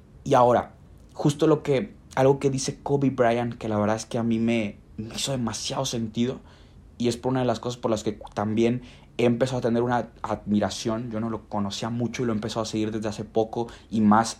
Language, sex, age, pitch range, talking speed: Spanish, male, 20-39, 105-135 Hz, 230 wpm